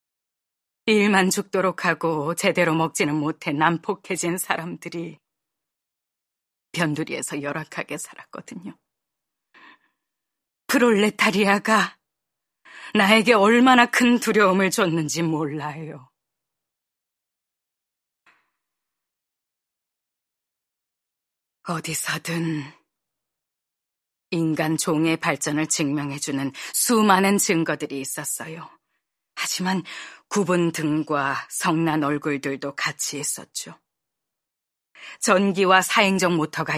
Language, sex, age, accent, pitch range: Korean, female, 30-49, native, 155-215 Hz